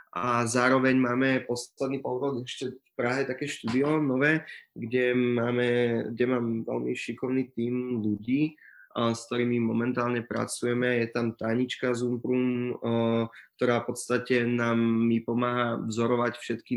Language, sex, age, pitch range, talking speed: Czech, male, 20-39, 110-125 Hz, 125 wpm